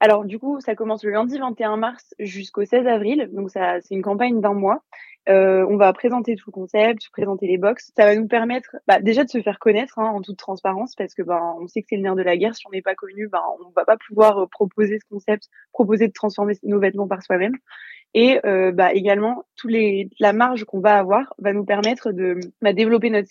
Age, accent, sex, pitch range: 20-39, French, female, 195-220 Hz